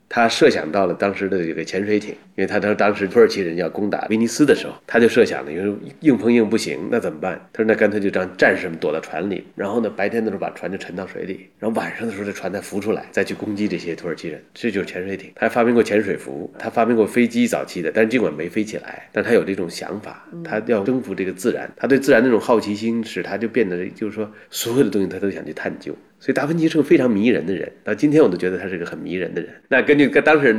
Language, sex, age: Chinese, male, 30-49